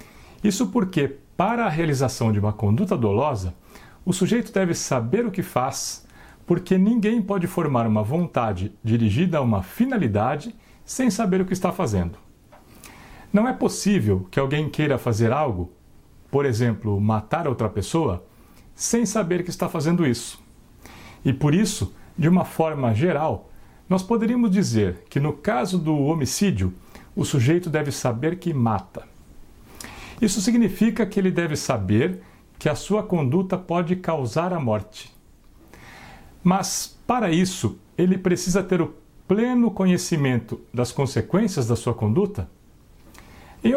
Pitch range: 115-185 Hz